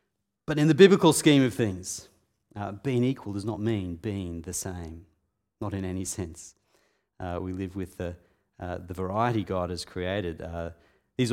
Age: 40-59